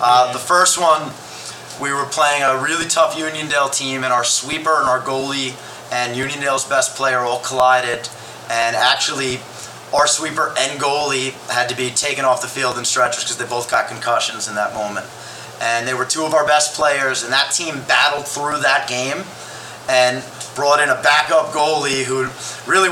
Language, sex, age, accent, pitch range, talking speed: English, male, 30-49, American, 125-150 Hz, 185 wpm